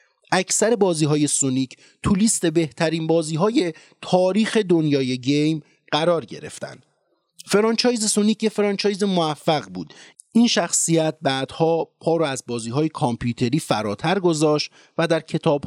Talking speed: 125 wpm